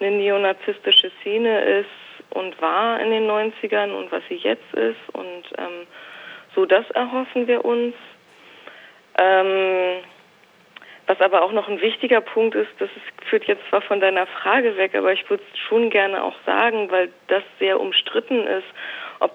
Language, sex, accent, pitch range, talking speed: German, female, German, 185-240 Hz, 160 wpm